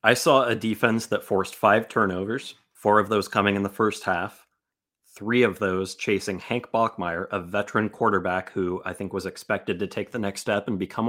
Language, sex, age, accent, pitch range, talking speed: English, male, 30-49, American, 95-105 Hz, 200 wpm